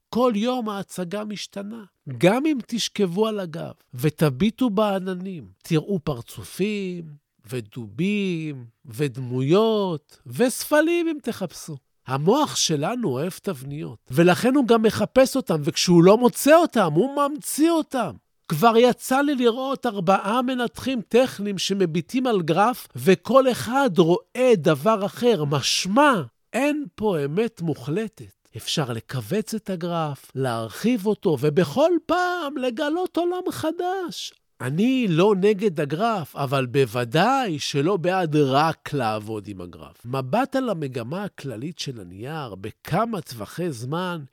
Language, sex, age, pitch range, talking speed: Hebrew, male, 50-69, 155-245 Hz, 115 wpm